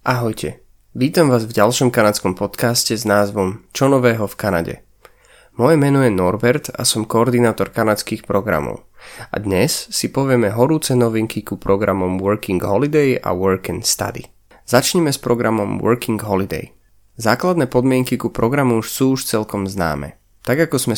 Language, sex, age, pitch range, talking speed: Slovak, male, 30-49, 100-135 Hz, 150 wpm